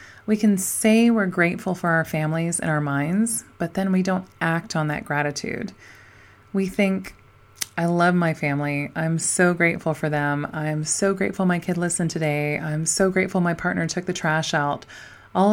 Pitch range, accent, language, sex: 155-205 Hz, American, English, female